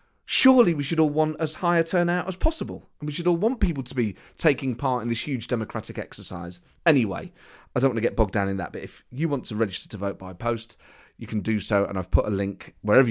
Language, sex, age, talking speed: English, male, 30-49, 255 wpm